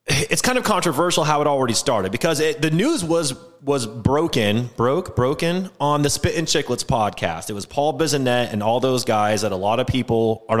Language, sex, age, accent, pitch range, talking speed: English, male, 30-49, American, 115-150 Hz, 210 wpm